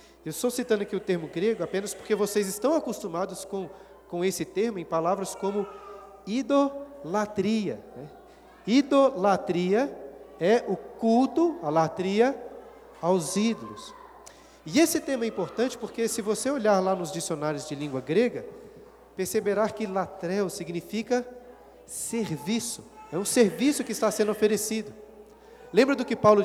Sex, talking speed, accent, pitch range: male, 135 wpm, Brazilian, 175-225 Hz